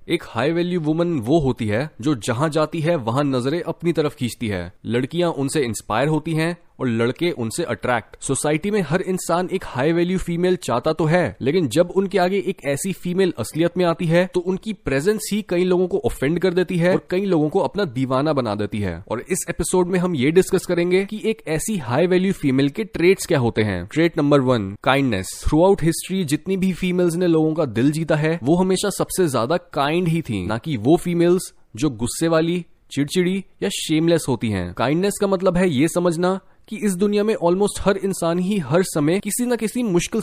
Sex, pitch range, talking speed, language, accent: male, 135-185 Hz, 210 wpm, Hindi, native